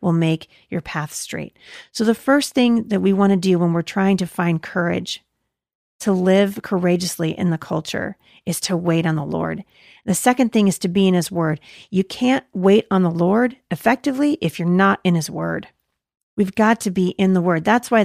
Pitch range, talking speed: 170-215 Hz, 205 wpm